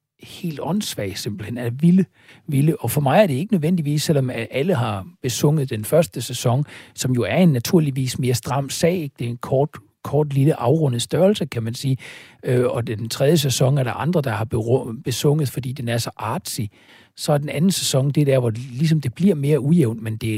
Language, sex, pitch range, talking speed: Danish, male, 115-145 Hz, 210 wpm